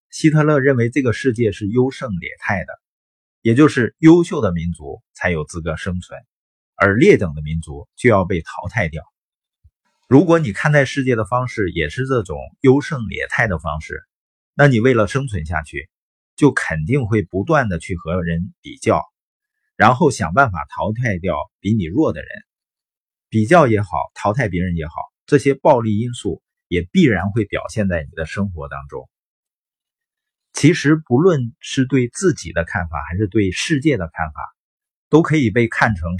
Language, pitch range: Chinese, 85-135 Hz